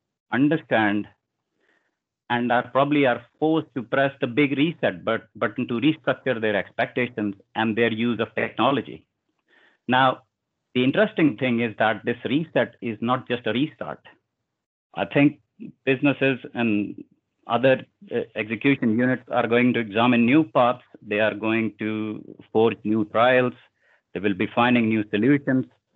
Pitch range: 110-135 Hz